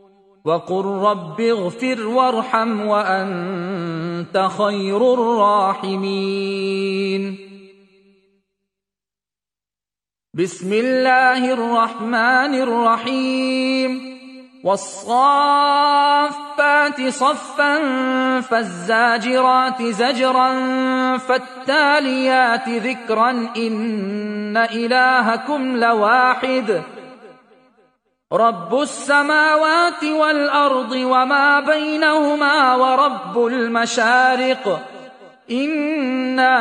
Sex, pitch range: male, 210-260 Hz